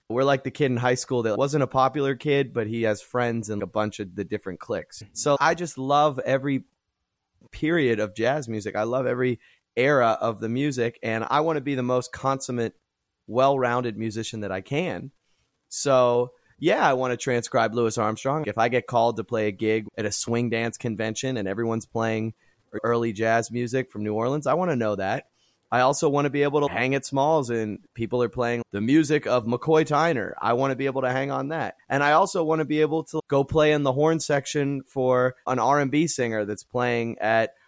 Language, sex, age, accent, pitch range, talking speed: English, male, 30-49, American, 110-135 Hz, 215 wpm